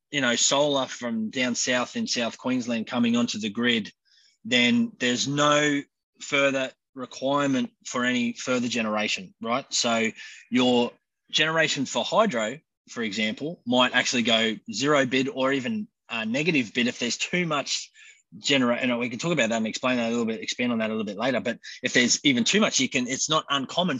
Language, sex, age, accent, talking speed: English, male, 20-39, Australian, 185 wpm